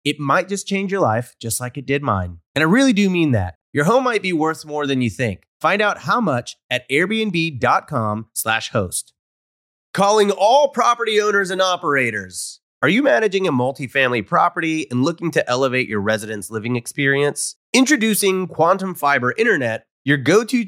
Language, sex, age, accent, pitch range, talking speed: English, male, 30-49, American, 120-185 Hz, 175 wpm